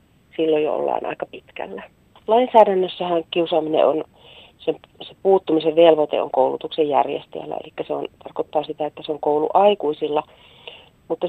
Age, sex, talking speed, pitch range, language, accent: 40-59, female, 135 wpm, 155-180 Hz, Finnish, native